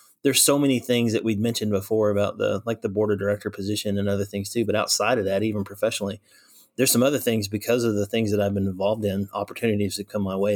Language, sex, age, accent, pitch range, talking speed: English, male, 30-49, American, 100-120 Hz, 250 wpm